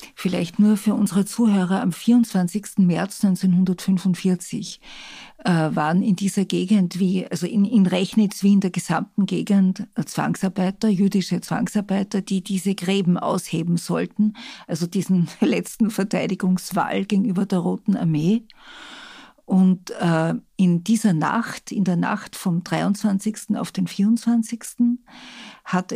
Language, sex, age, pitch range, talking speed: German, female, 50-69, 185-220 Hz, 120 wpm